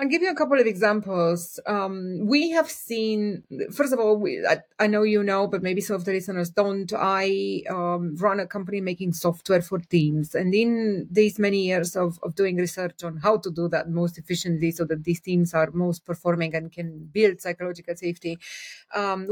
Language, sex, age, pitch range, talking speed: English, female, 30-49, 180-220 Hz, 200 wpm